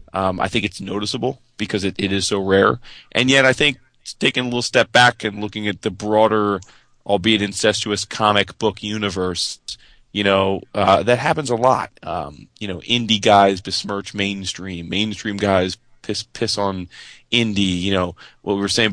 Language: English